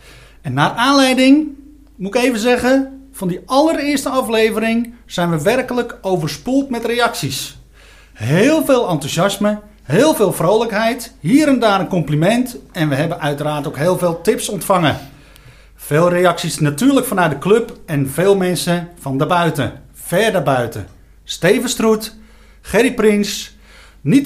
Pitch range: 160-230 Hz